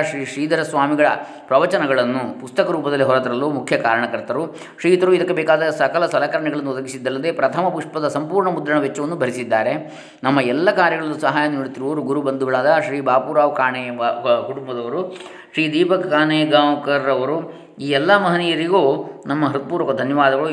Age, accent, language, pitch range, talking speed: 20-39, native, Kannada, 130-165 Hz, 120 wpm